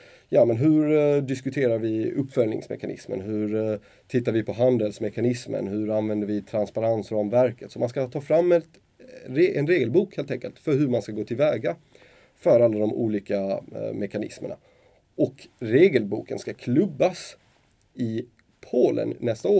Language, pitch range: Swedish, 110-145 Hz